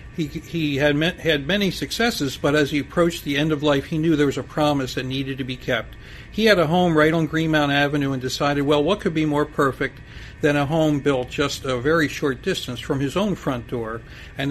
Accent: American